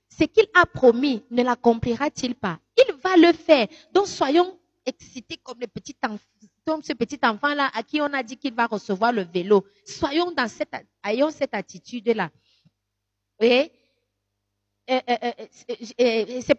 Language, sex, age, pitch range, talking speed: French, female, 40-59, 210-290 Hz, 140 wpm